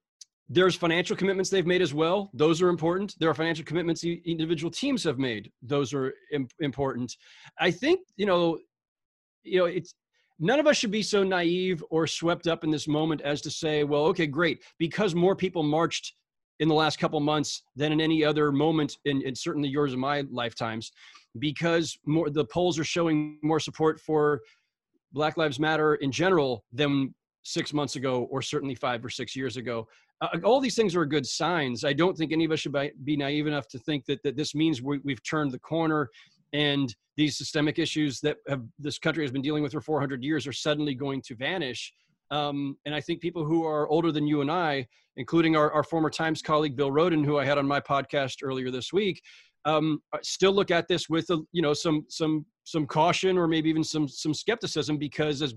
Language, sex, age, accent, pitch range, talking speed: English, male, 30-49, American, 145-170 Hz, 205 wpm